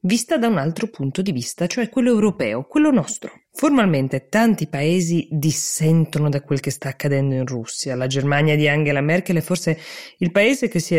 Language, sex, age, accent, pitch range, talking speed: Italian, female, 20-39, native, 140-195 Hz, 190 wpm